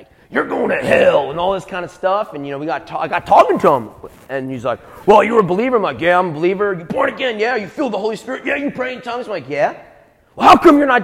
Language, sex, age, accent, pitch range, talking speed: English, male, 30-49, American, 220-345 Hz, 305 wpm